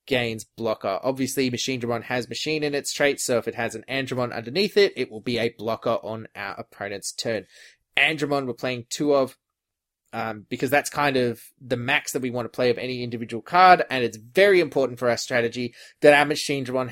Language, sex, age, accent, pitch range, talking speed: English, male, 20-39, Australian, 115-145 Hz, 210 wpm